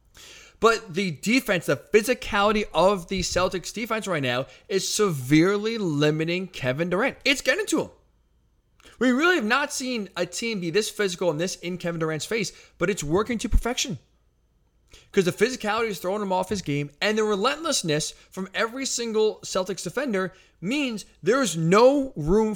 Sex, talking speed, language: male, 170 wpm, English